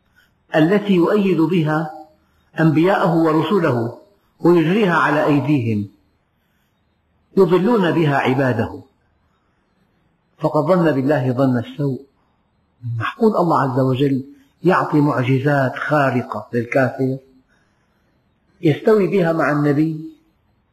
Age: 50-69